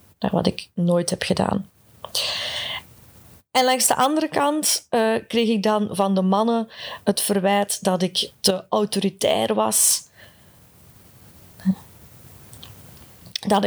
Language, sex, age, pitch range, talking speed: Dutch, female, 30-49, 180-235 Hz, 115 wpm